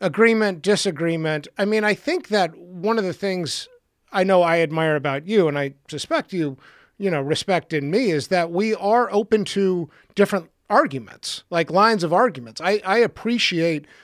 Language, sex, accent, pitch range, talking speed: English, male, American, 150-205 Hz, 175 wpm